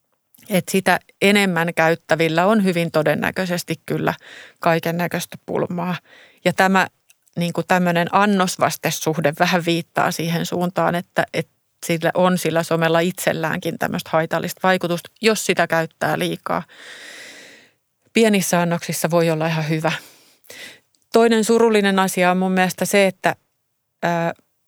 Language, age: Finnish, 30-49